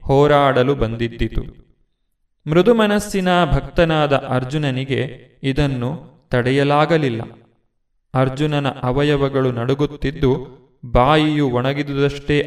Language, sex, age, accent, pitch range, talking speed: Kannada, male, 30-49, native, 125-150 Hz, 60 wpm